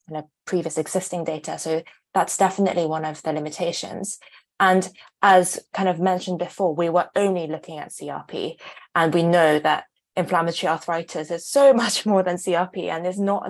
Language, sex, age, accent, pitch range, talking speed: English, female, 20-39, British, 160-190 Hz, 165 wpm